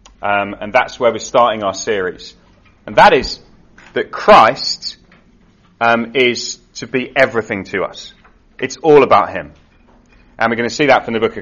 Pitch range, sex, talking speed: 115-145 Hz, male, 180 wpm